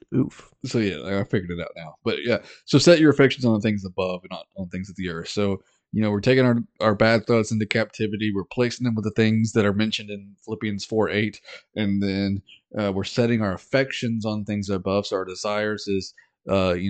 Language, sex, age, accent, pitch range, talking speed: English, male, 20-39, American, 100-110 Hz, 230 wpm